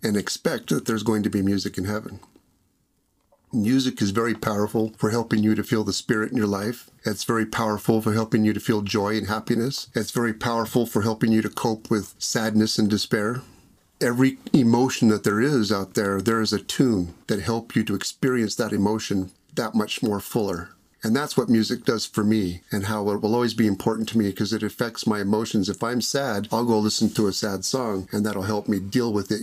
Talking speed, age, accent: 220 wpm, 50-69, American